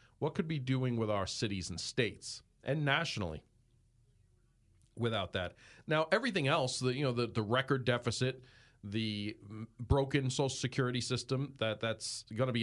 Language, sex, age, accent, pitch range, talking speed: English, male, 40-59, American, 120-150 Hz, 160 wpm